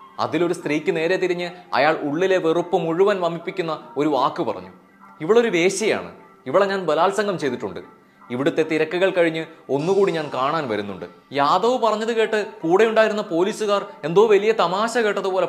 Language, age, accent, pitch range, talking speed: Malayalam, 20-39, native, 170-210 Hz, 130 wpm